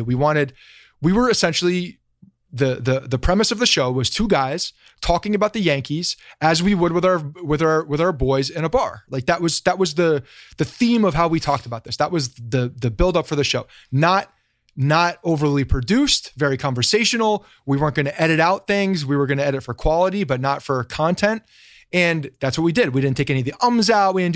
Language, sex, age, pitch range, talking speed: English, male, 30-49, 135-175 Hz, 230 wpm